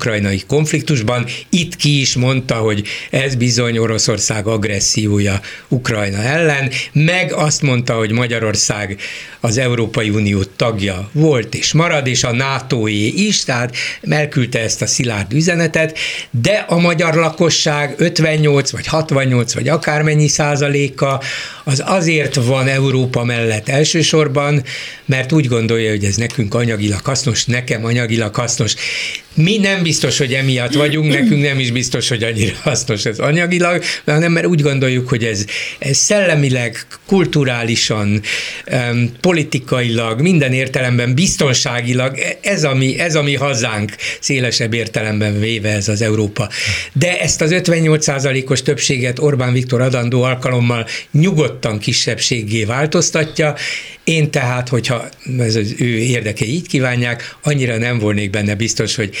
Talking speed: 130 wpm